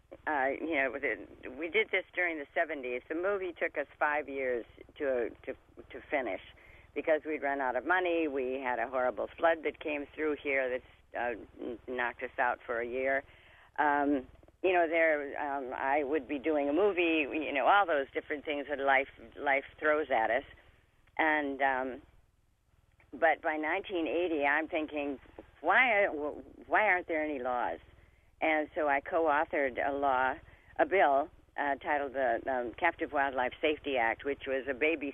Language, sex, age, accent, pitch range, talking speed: English, female, 50-69, American, 125-155 Hz, 165 wpm